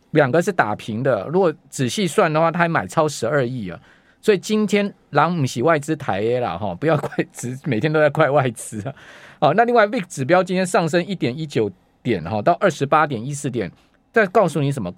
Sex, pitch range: male, 140-185 Hz